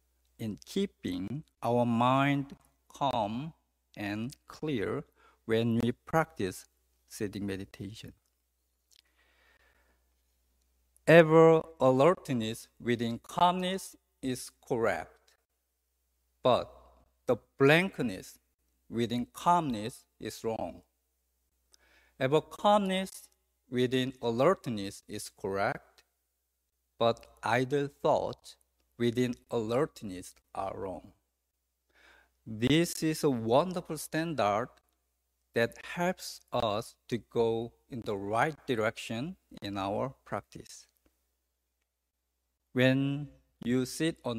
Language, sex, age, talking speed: English, male, 50-69, 80 wpm